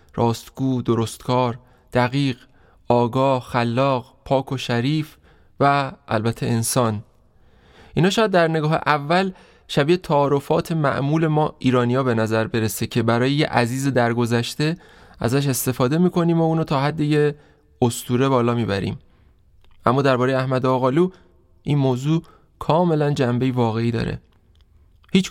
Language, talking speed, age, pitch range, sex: Persian, 120 wpm, 20-39, 115-140 Hz, male